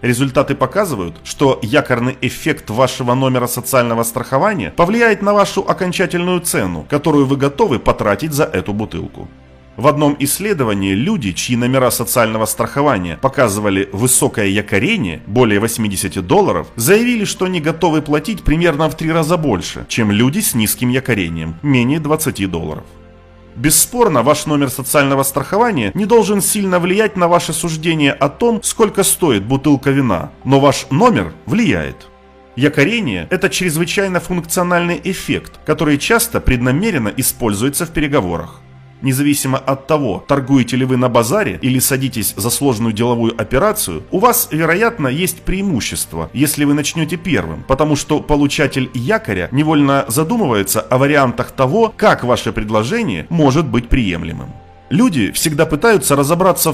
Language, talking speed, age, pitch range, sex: Russian, 135 wpm, 30-49, 120-175 Hz, male